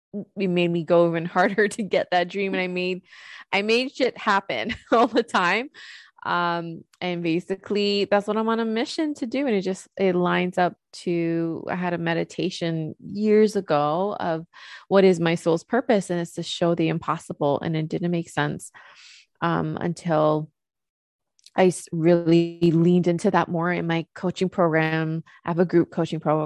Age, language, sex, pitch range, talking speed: 20-39, English, female, 160-185 Hz, 175 wpm